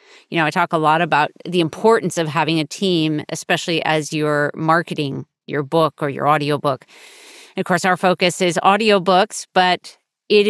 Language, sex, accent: English, female, American